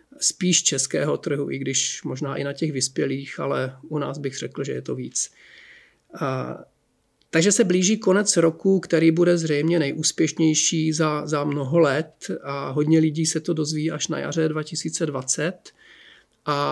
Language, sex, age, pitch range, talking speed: Czech, male, 40-59, 145-165 Hz, 155 wpm